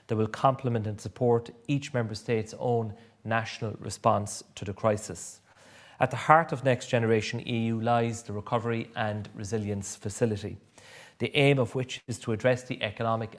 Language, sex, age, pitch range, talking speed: English, male, 30-49, 110-130 Hz, 160 wpm